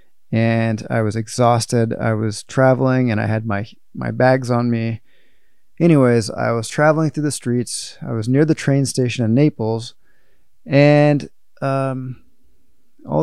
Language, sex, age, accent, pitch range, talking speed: English, male, 20-39, American, 115-140 Hz, 150 wpm